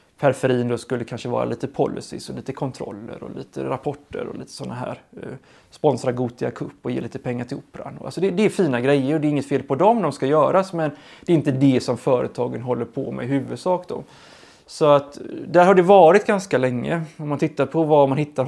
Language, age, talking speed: English, 20-39, 230 wpm